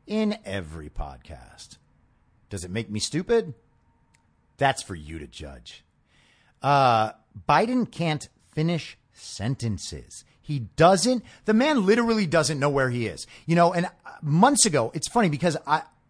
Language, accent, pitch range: English, American, 115-170 Hz